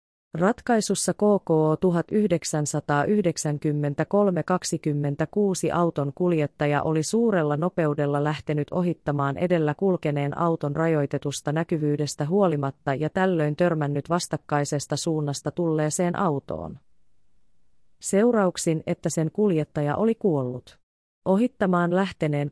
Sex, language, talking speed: female, Finnish, 85 wpm